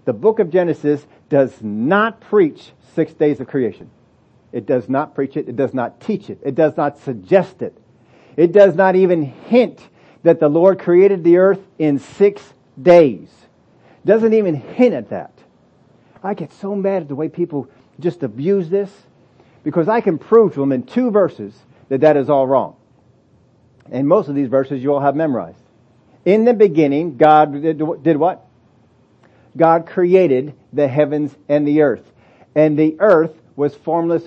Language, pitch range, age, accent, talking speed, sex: English, 140-185 Hz, 50-69, American, 170 wpm, male